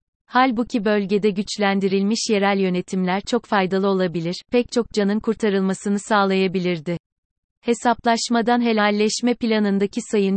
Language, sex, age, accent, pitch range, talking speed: Turkish, female, 30-49, native, 190-225 Hz, 100 wpm